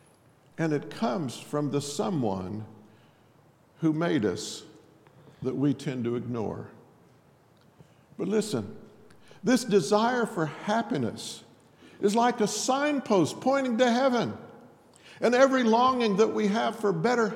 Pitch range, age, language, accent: 135-225 Hz, 50-69, English, American